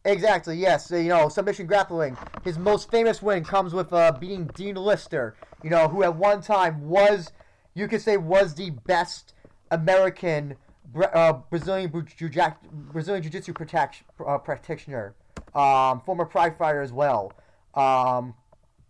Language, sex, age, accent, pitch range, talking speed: English, male, 20-39, American, 135-180 Hz, 145 wpm